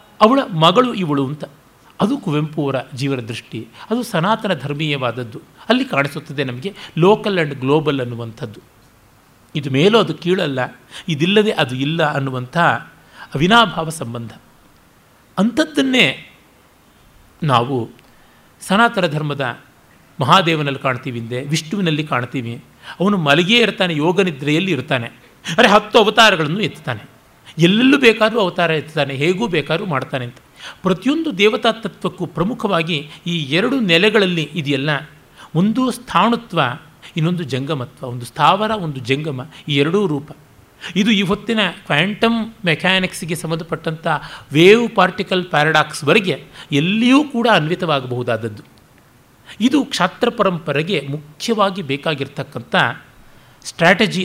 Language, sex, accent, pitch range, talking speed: Kannada, male, native, 140-200 Hz, 100 wpm